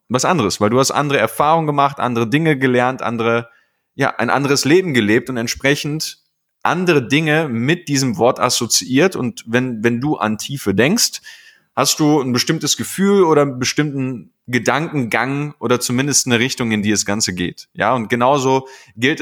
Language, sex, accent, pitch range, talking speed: German, male, German, 115-150 Hz, 170 wpm